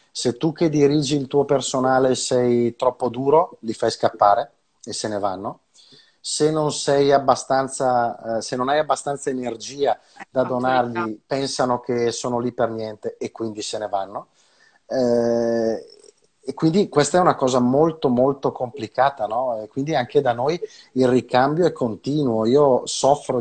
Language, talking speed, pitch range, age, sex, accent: Italian, 155 wpm, 115-145 Hz, 30-49, male, native